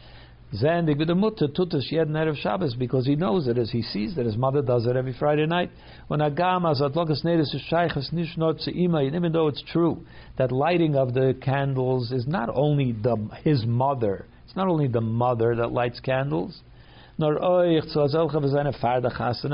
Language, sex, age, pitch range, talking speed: English, male, 50-69, 120-155 Hz, 120 wpm